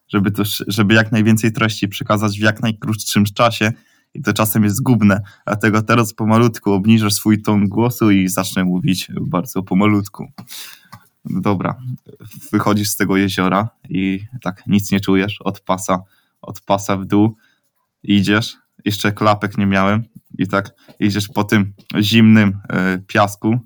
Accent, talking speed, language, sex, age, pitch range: native, 135 wpm, Polish, male, 20-39, 100-115 Hz